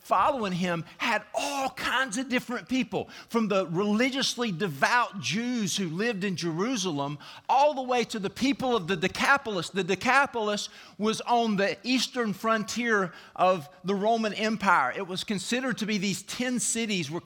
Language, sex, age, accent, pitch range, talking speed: English, male, 50-69, American, 185-240 Hz, 160 wpm